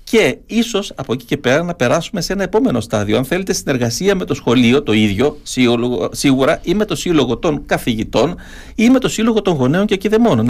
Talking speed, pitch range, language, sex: 200 wpm, 125-190 Hz, Greek, male